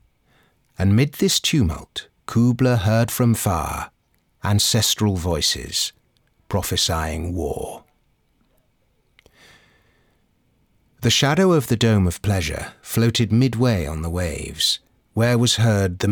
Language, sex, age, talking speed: English, male, 50-69, 105 wpm